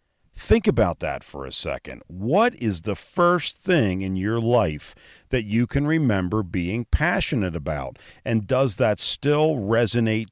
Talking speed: 150 wpm